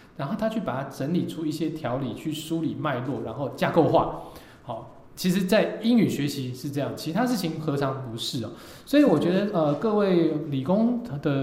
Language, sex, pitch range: Chinese, male, 130-165 Hz